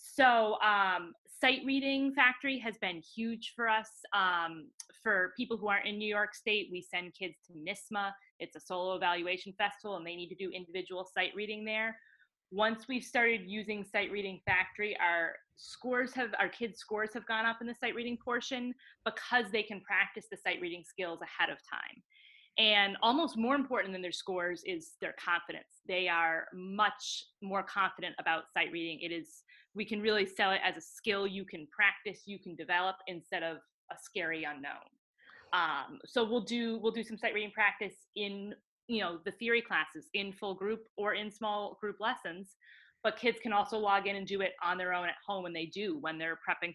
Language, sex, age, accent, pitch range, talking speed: English, female, 20-39, American, 180-230 Hz, 195 wpm